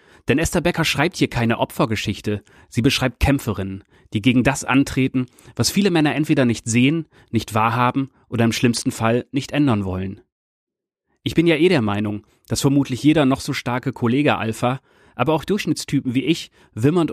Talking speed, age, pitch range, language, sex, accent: 170 wpm, 30-49, 110-140 Hz, German, male, German